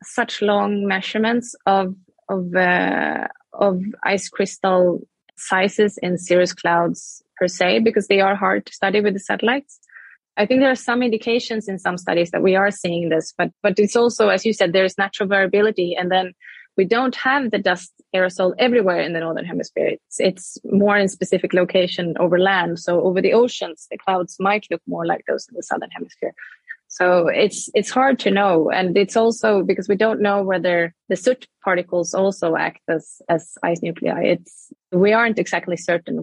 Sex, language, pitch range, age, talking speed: female, English, 175-210 Hz, 20-39, 185 wpm